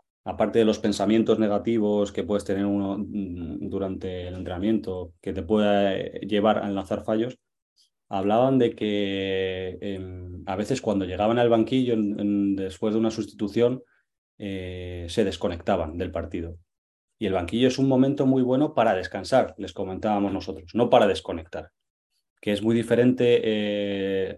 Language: Spanish